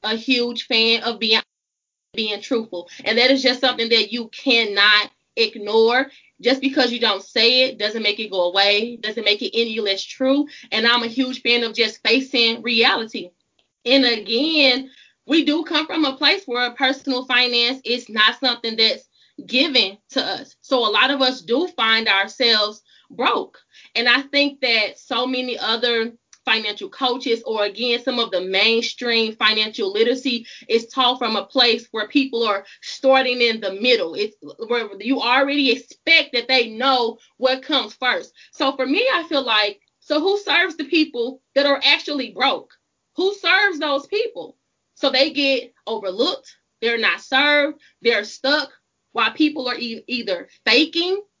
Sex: female